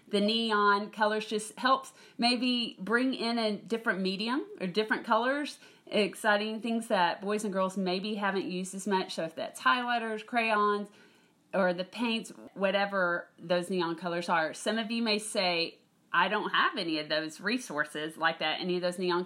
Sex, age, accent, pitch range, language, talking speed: female, 40-59, American, 180-230 Hz, English, 175 wpm